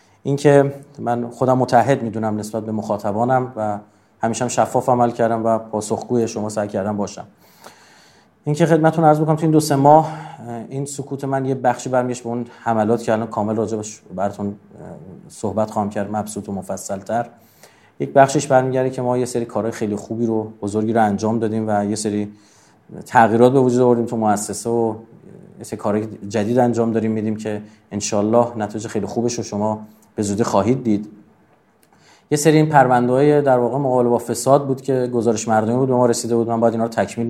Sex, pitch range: male, 110-125 Hz